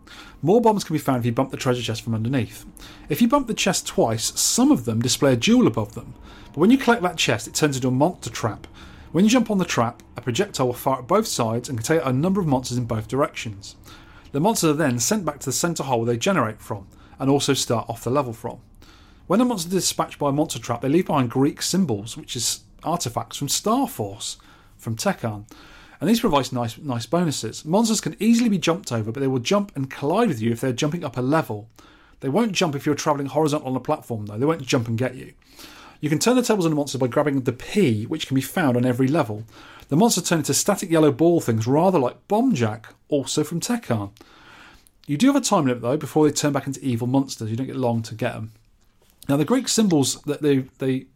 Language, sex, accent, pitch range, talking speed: English, male, British, 120-170 Hz, 245 wpm